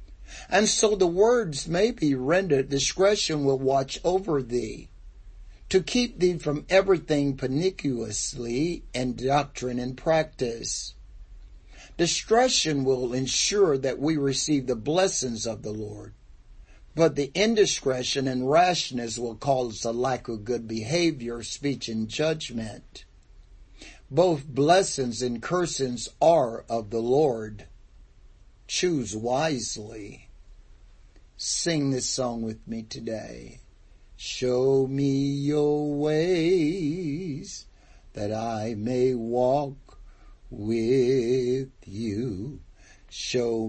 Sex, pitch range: male, 115-150 Hz